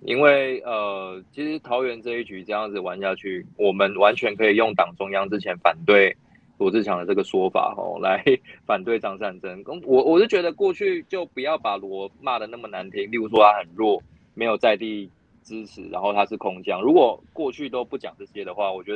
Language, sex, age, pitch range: Chinese, male, 20-39, 100-140 Hz